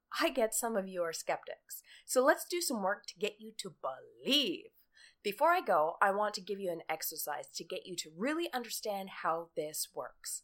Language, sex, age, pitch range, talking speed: English, female, 30-49, 185-280 Hz, 205 wpm